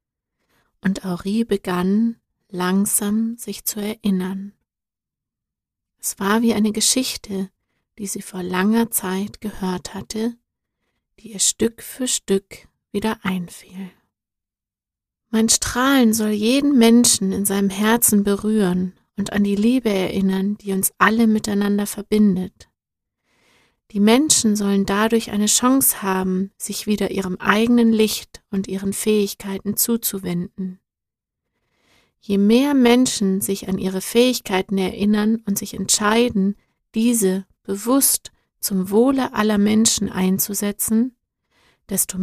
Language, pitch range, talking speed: German, 190-220 Hz, 115 wpm